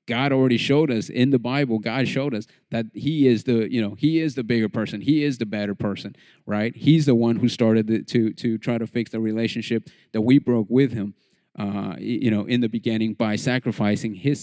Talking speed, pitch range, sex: 220 wpm, 110-130 Hz, male